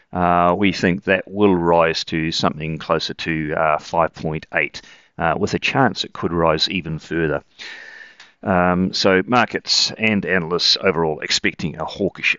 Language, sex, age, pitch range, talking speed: English, male, 40-59, 80-100 Hz, 140 wpm